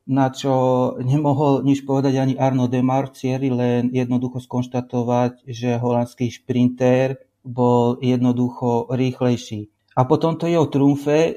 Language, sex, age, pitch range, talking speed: Slovak, male, 30-49, 120-130 Hz, 120 wpm